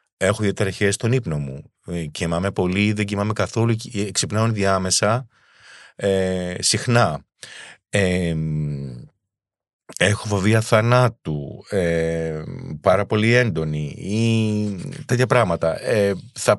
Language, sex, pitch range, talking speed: Greek, male, 85-110 Hz, 100 wpm